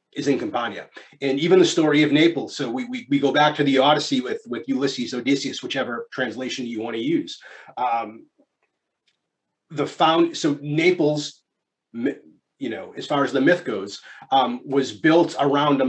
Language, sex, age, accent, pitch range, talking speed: English, male, 30-49, American, 135-155 Hz, 165 wpm